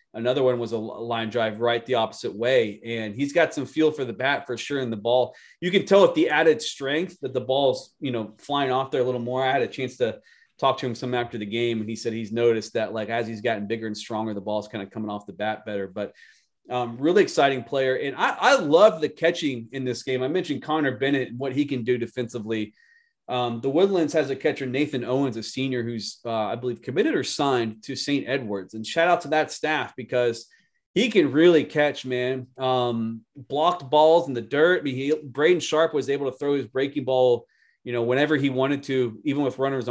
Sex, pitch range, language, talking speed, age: male, 115-140 Hz, English, 235 wpm, 30-49